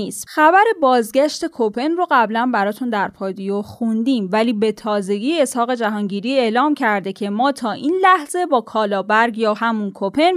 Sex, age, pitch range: female, 10-29, 225-295 Hz